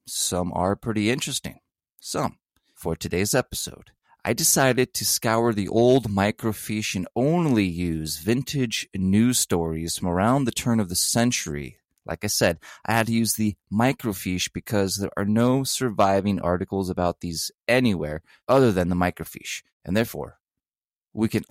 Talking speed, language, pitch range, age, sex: 150 wpm, English, 85-115 Hz, 30-49, male